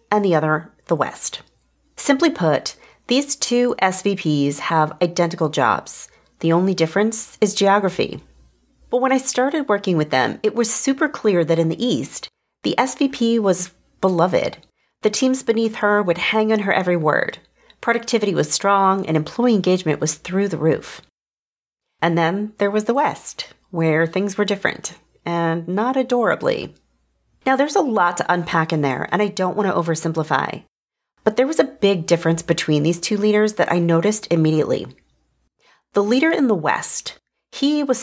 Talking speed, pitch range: 165 wpm, 165-230 Hz